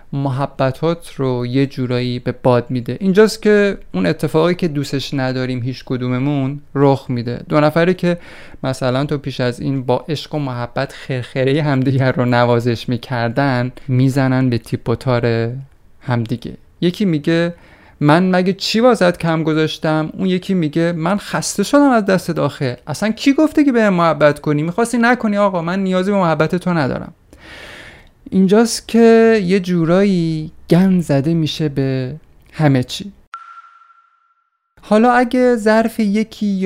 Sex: male